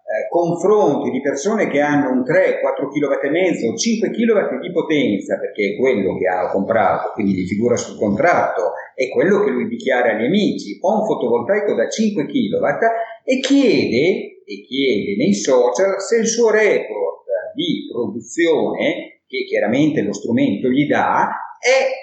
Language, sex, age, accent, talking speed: Italian, male, 50-69, native, 155 wpm